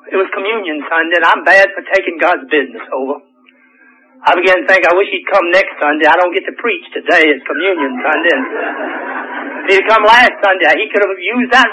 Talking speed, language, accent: 210 wpm, English, American